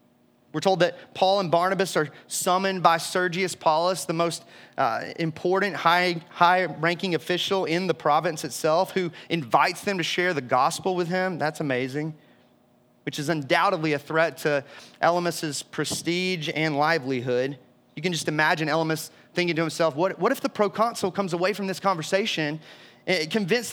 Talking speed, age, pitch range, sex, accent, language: 155 wpm, 30-49, 160-200 Hz, male, American, English